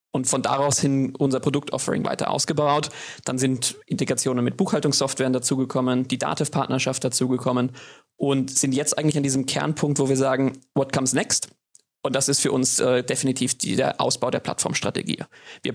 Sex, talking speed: male, 170 wpm